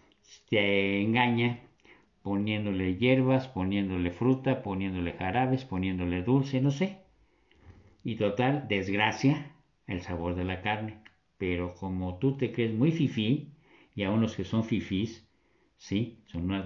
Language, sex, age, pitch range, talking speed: Spanish, male, 50-69, 95-125 Hz, 130 wpm